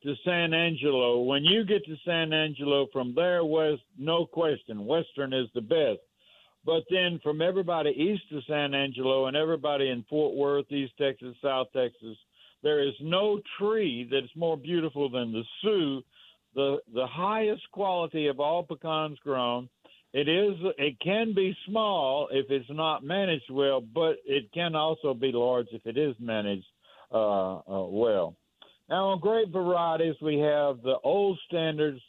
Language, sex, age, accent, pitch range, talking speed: English, male, 60-79, American, 135-175 Hz, 160 wpm